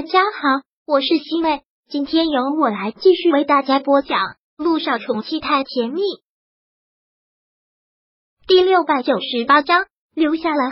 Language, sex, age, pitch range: Chinese, male, 30-49, 270-330 Hz